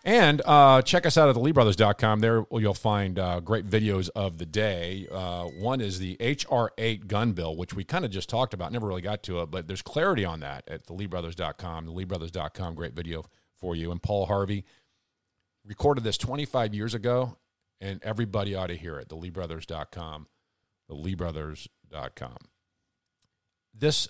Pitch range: 95-120 Hz